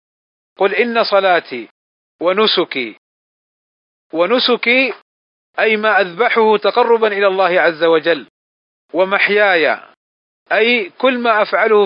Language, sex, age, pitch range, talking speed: Arabic, male, 40-59, 185-225 Hz, 90 wpm